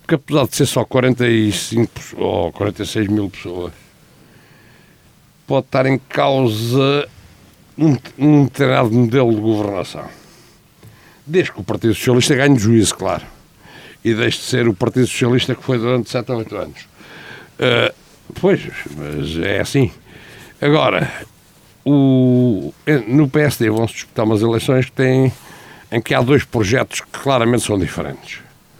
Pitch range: 110-140 Hz